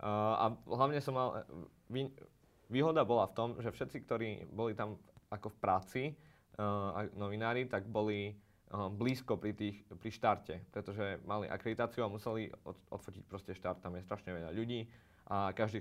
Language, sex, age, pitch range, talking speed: Slovak, male, 20-39, 100-115 Hz, 145 wpm